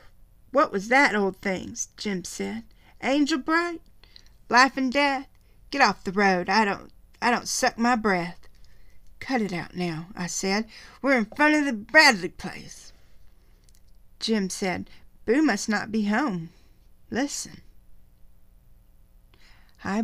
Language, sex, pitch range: English, female, 190-235 Hz